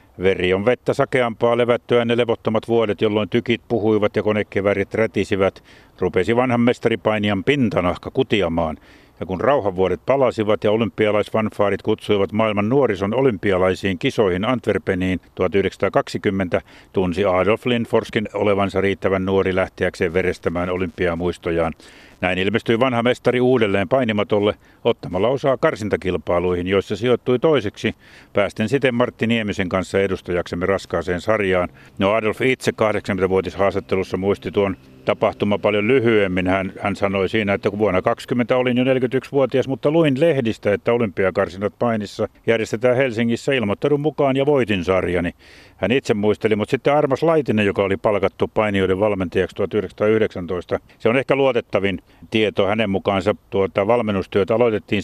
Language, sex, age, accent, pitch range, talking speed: Finnish, male, 60-79, native, 95-120 Hz, 130 wpm